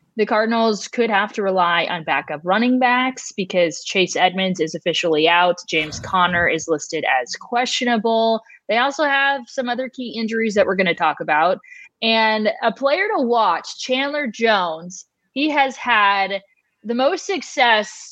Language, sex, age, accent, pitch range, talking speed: English, female, 20-39, American, 180-230 Hz, 160 wpm